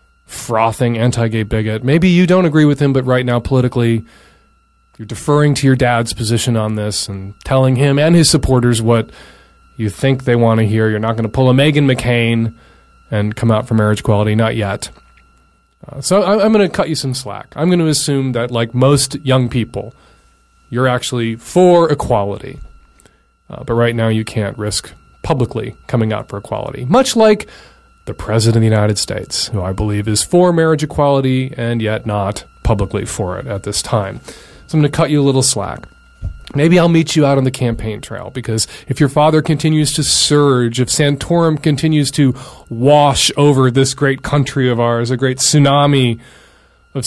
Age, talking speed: 30-49, 190 wpm